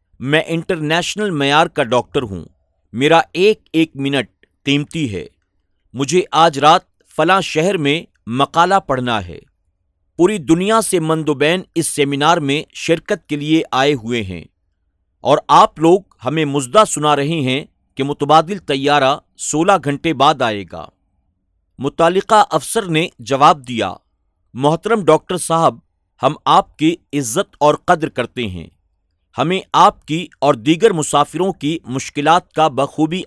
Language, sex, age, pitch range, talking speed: Urdu, male, 50-69, 125-170 Hz, 140 wpm